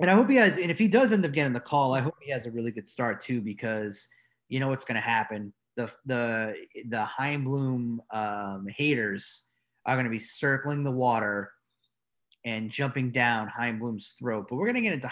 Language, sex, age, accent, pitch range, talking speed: English, male, 30-49, American, 110-140 Hz, 210 wpm